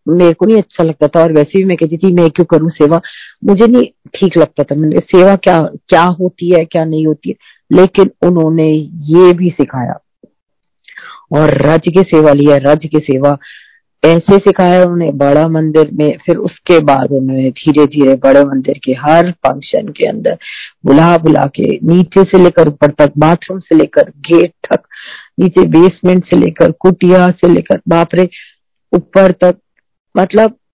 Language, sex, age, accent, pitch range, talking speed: Hindi, female, 40-59, native, 155-185 Hz, 170 wpm